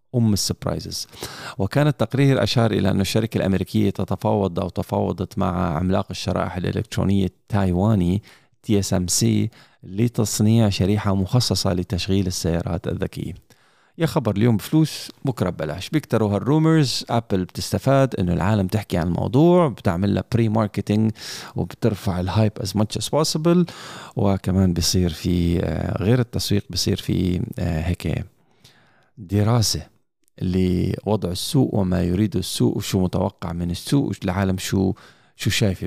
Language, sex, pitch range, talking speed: Arabic, male, 90-115 Hz, 115 wpm